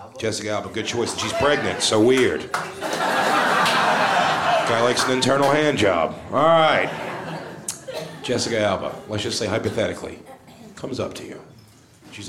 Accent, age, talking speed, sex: American, 40-59, 130 wpm, male